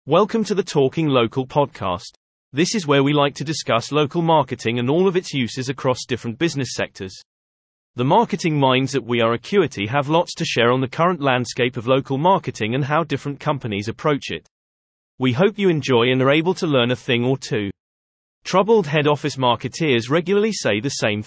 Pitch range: 115-160 Hz